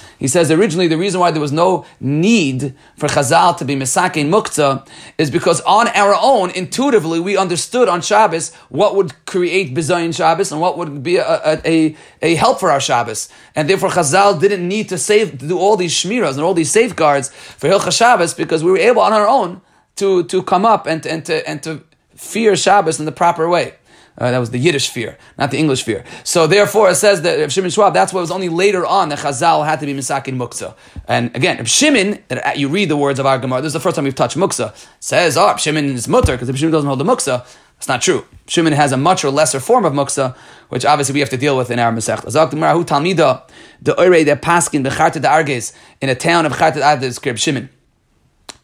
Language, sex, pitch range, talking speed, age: Hebrew, male, 140-180 Hz, 215 wpm, 30-49